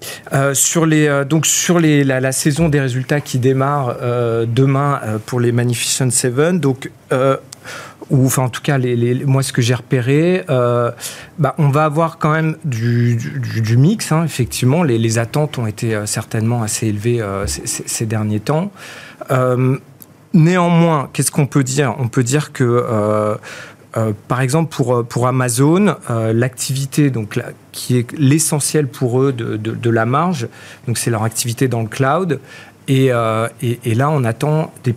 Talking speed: 185 wpm